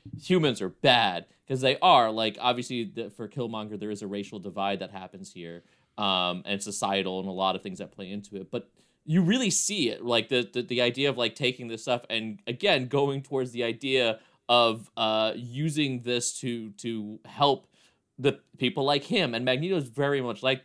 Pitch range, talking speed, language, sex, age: 110-140 Hz, 200 wpm, English, male, 30-49